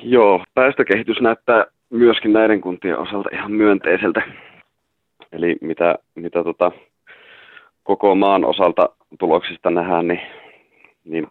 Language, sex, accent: Czech, male, Finnish